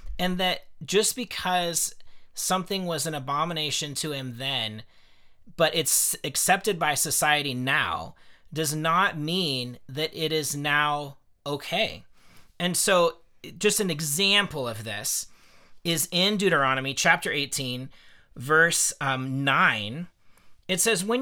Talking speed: 120 wpm